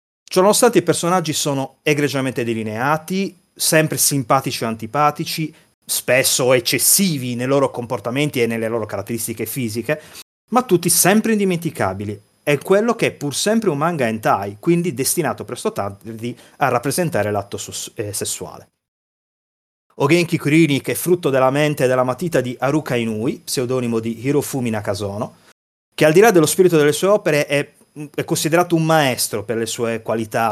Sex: male